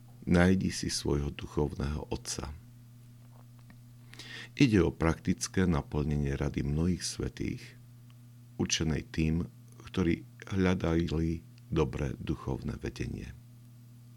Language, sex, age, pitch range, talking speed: Slovak, male, 50-69, 75-120 Hz, 80 wpm